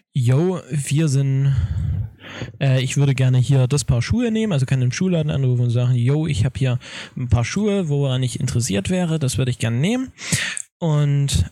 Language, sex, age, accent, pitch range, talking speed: German, male, 10-29, German, 125-150 Hz, 190 wpm